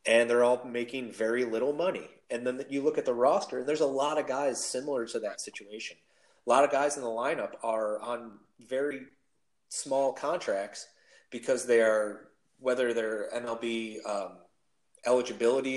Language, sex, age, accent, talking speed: English, male, 30-49, American, 165 wpm